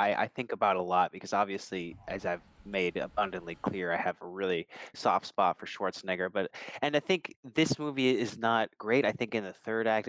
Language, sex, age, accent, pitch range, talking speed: English, male, 20-39, American, 110-145 Hz, 210 wpm